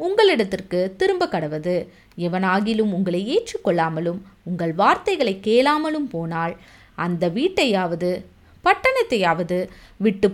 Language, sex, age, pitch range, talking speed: Tamil, female, 20-39, 180-275 Hz, 80 wpm